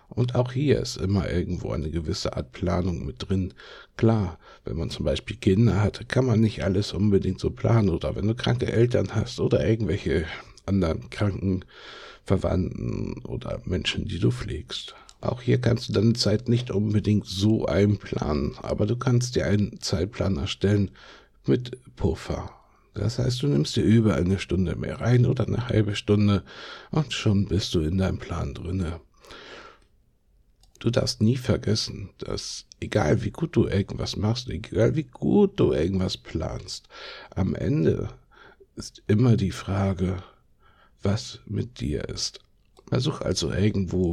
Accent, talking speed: German, 155 wpm